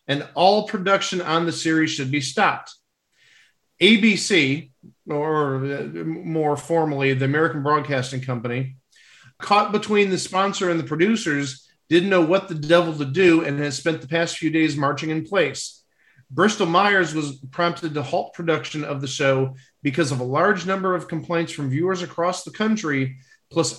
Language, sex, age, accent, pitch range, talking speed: English, male, 40-59, American, 145-185 Hz, 160 wpm